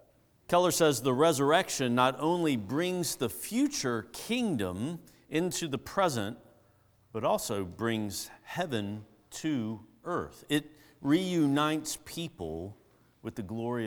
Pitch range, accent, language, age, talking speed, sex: 100-130 Hz, American, English, 50-69, 110 wpm, male